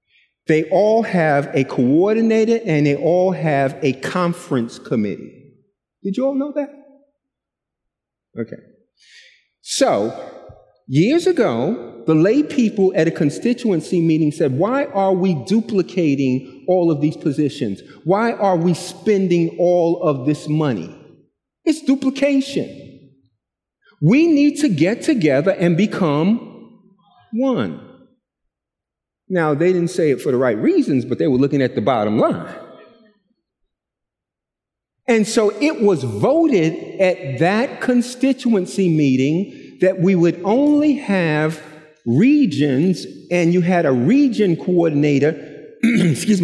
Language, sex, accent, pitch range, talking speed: English, male, American, 155-250 Hz, 120 wpm